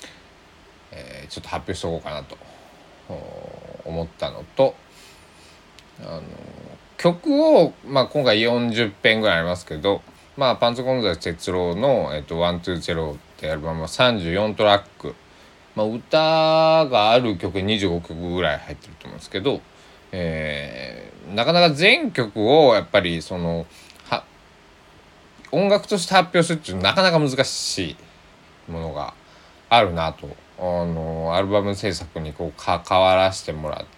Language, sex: Japanese, male